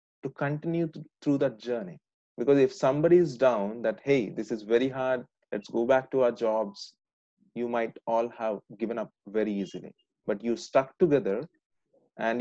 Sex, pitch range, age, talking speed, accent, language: male, 115-155 Hz, 30-49, 175 wpm, Indian, English